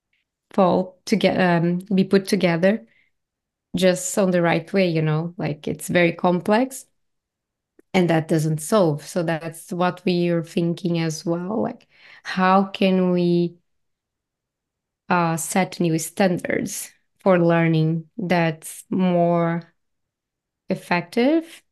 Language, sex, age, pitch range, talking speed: English, female, 20-39, 170-195 Hz, 120 wpm